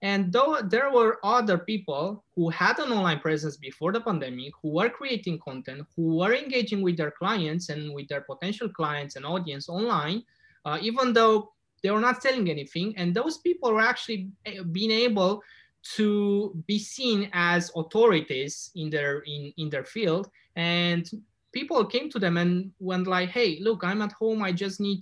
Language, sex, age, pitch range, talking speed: English, male, 20-39, 160-210 Hz, 175 wpm